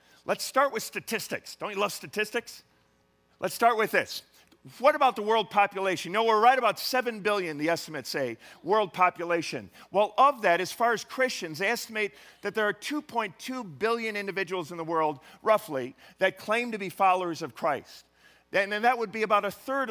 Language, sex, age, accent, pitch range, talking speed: English, male, 50-69, American, 165-225 Hz, 180 wpm